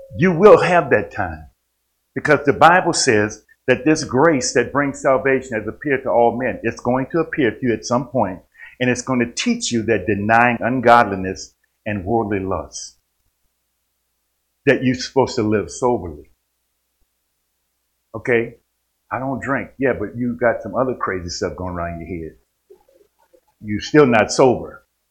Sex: male